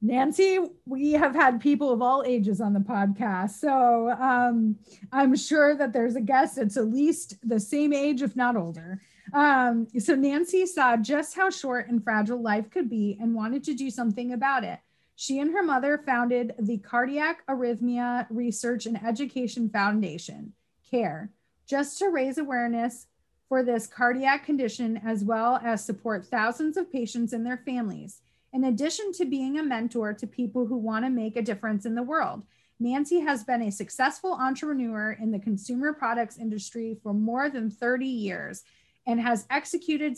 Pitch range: 225-275 Hz